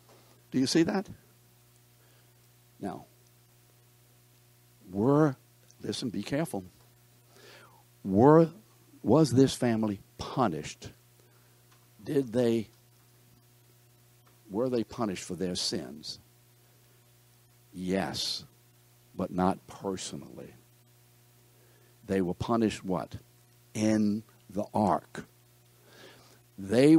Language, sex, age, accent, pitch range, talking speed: English, male, 60-79, American, 105-125 Hz, 75 wpm